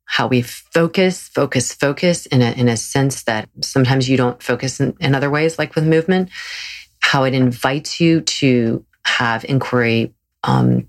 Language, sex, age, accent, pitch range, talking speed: English, female, 30-49, American, 120-145 Hz, 165 wpm